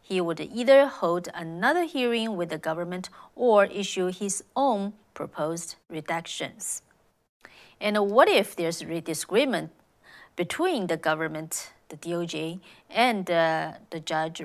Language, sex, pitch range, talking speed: English, female, 170-205 Hz, 125 wpm